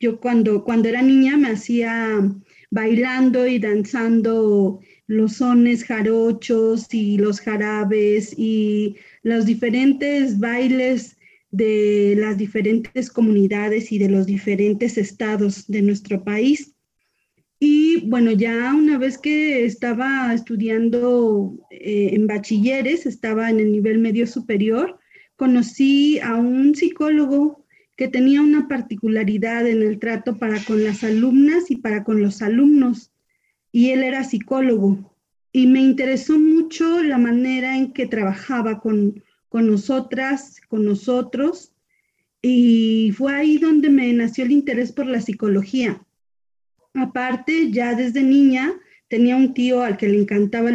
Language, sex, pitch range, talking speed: Spanish, female, 215-260 Hz, 130 wpm